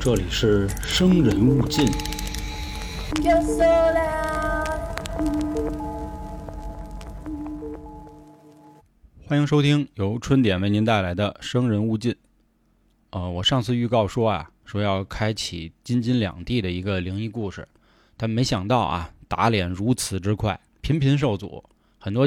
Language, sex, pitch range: Chinese, male, 95-130 Hz